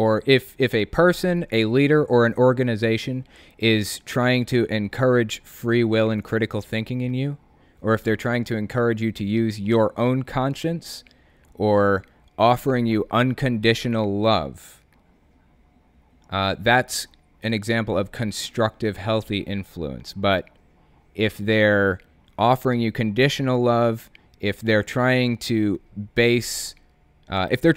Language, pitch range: English, 100-125 Hz